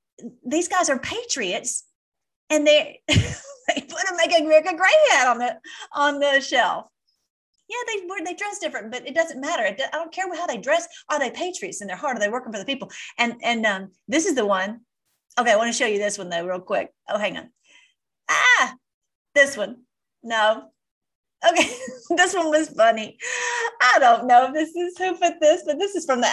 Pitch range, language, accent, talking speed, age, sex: 215-325 Hz, English, American, 205 wpm, 40-59, female